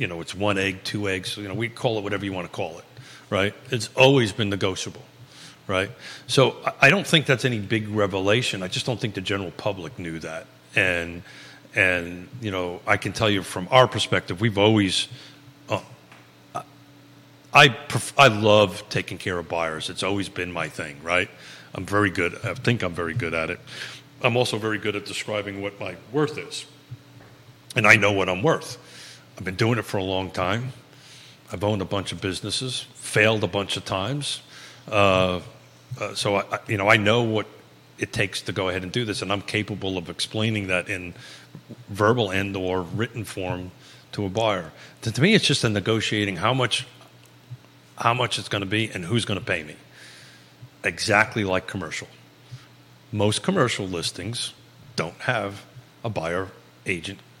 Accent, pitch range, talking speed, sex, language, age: American, 95-125 Hz, 185 wpm, male, English, 40-59